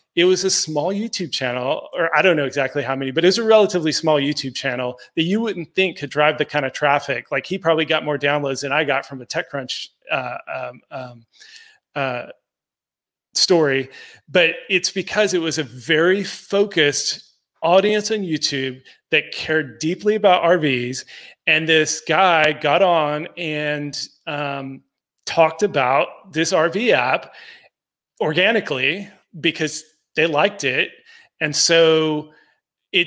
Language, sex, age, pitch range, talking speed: English, male, 30-49, 145-175 Hz, 150 wpm